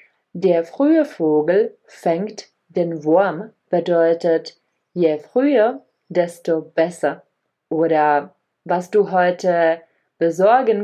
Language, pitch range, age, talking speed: Czech, 170-220 Hz, 30-49, 90 wpm